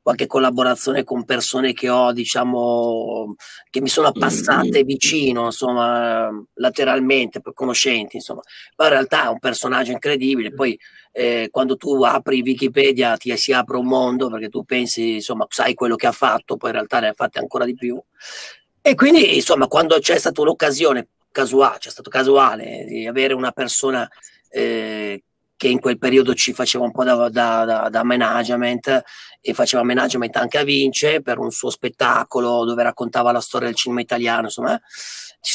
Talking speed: 170 wpm